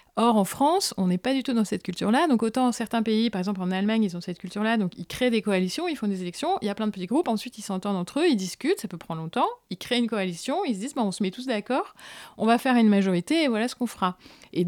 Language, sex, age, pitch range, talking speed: French, female, 30-49, 180-230 Hz, 305 wpm